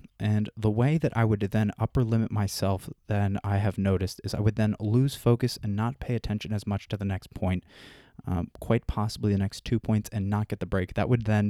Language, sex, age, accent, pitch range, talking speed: English, male, 20-39, American, 95-110 Hz, 235 wpm